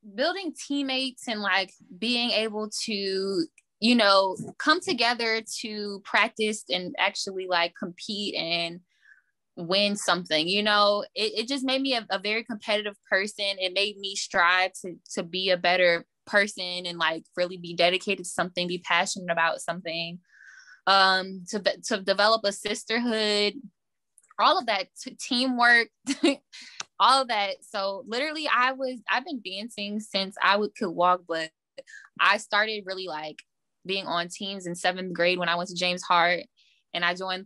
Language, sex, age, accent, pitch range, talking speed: English, female, 10-29, American, 180-220 Hz, 155 wpm